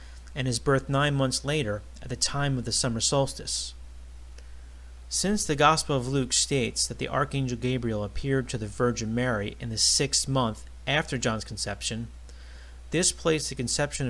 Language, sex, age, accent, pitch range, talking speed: English, male, 30-49, American, 100-140 Hz, 165 wpm